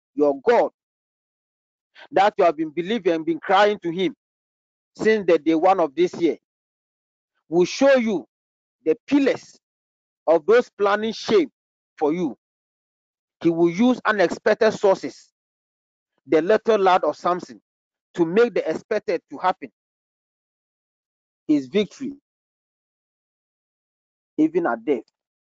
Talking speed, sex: 120 wpm, male